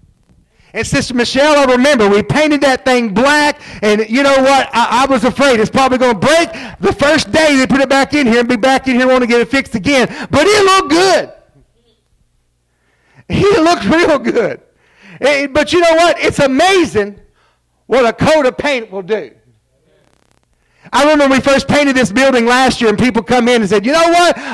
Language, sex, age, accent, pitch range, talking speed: English, male, 40-59, American, 200-285 Hz, 205 wpm